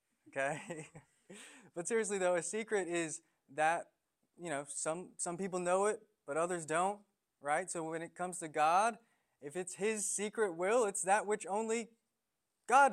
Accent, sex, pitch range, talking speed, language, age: American, male, 160-215 Hz, 160 wpm, English, 20-39